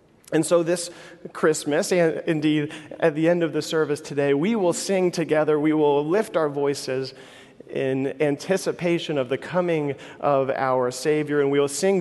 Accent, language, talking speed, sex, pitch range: American, English, 170 wpm, male, 135-165 Hz